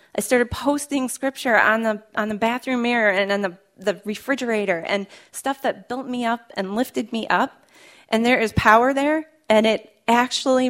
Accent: American